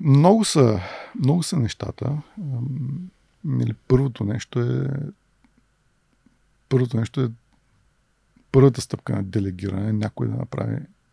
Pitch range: 110-135 Hz